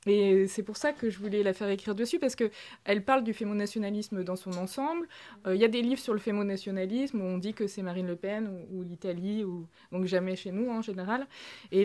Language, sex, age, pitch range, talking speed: French, female, 20-39, 185-220 Hz, 250 wpm